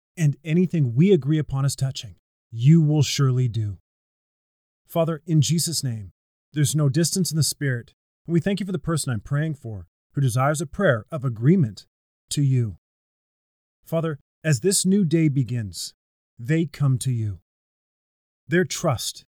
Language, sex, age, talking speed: English, male, 30-49, 155 wpm